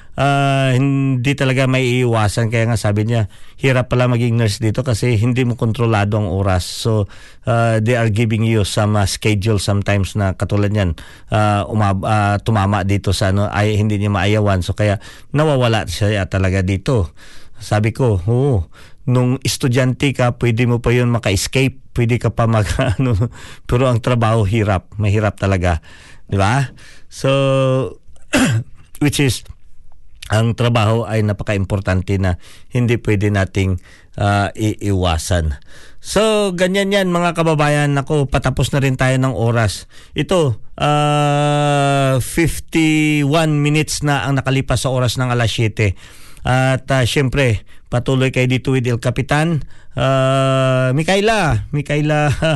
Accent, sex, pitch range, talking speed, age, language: native, male, 105-135 Hz, 140 wpm, 50-69, Filipino